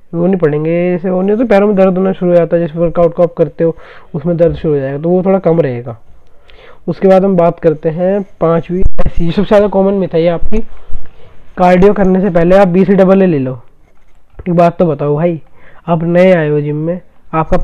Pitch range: 155-180 Hz